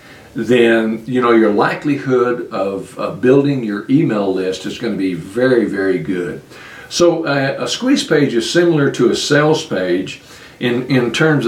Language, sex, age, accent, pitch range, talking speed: English, male, 60-79, American, 115-160 Hz, 165 wpm